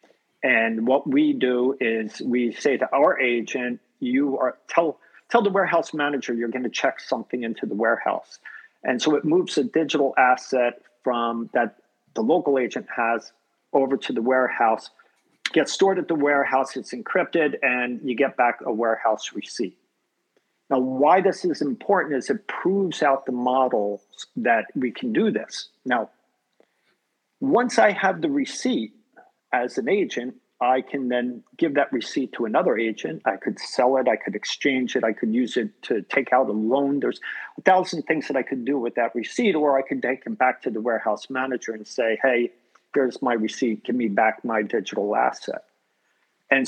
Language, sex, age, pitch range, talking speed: English, male, 50-69, 120-155 Hz, 180 wpm